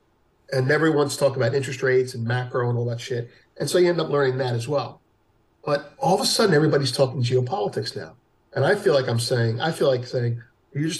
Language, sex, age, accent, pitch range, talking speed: English, male, 50-69, American, 125-165 Hz, 230 wpm